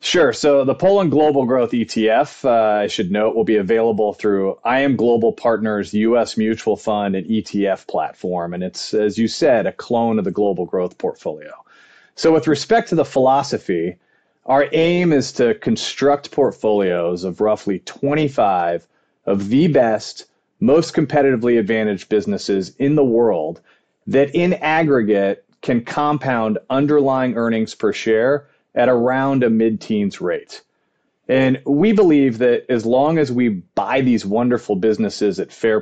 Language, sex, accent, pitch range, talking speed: English, male, American, 105-140 Hz, 150 wpm